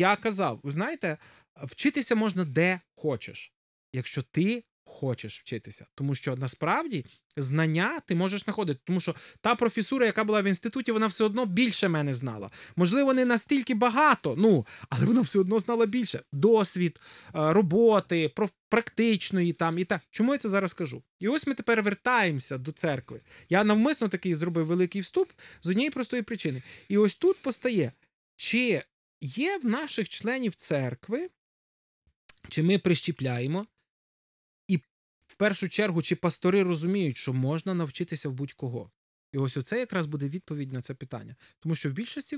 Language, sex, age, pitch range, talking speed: Ukrainian, male, 20-39, 150-220 Hz, 155 wpm